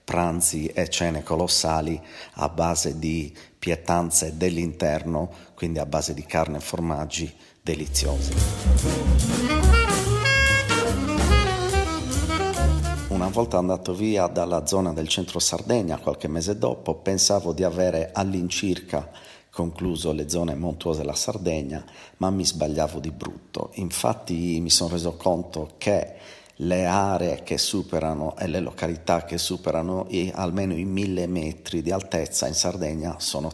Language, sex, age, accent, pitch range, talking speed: Italian, male, 50-69, native, 80-90 Hz, 120 wpm